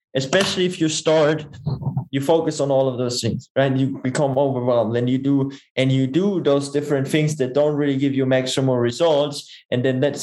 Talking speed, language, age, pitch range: 200 wpm, English, 20-39, 130-145 Hz